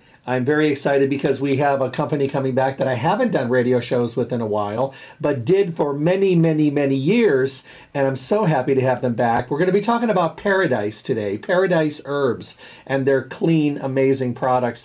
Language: English